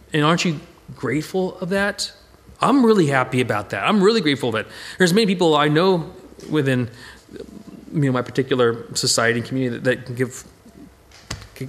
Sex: male